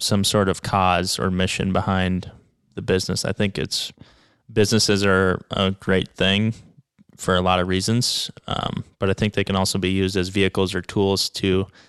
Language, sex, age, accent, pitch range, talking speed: English, male, 10-29, American, 90-100 Hz, 180 wpm